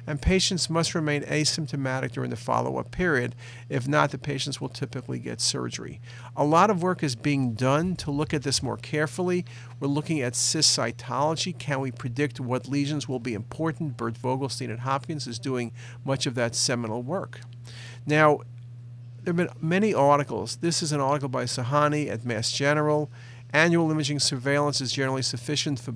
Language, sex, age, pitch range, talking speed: English, male, 50-69, 120-145 Hz, 175 wpm